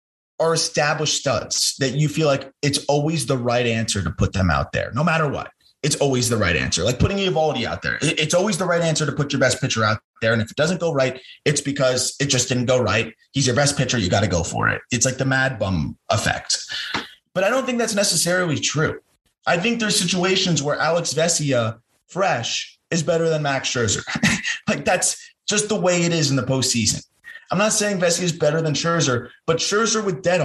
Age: 20-39